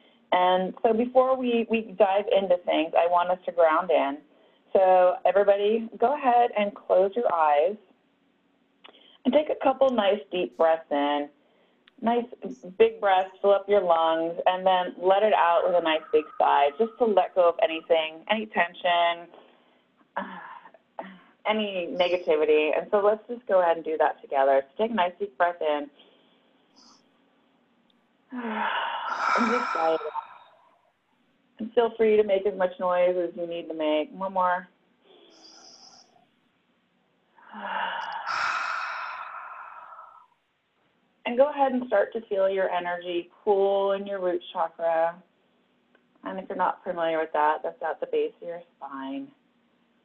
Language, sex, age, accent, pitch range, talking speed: English, female, 30-49, American, 165-250 Hz, 140 wpm